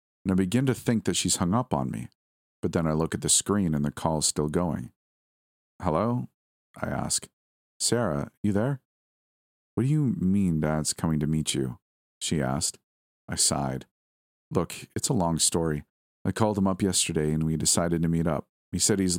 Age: 40-59